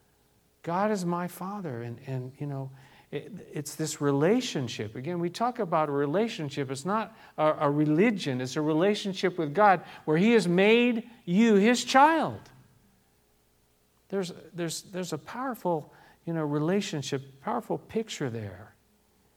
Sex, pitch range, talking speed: male, 130-180 Hz, 140 wpm